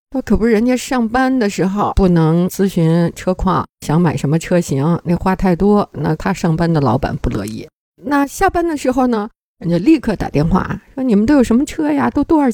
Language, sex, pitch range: Chinese, female, 160-210 Hz